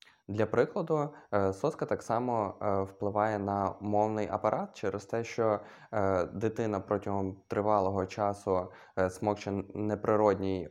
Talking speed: 100 wpm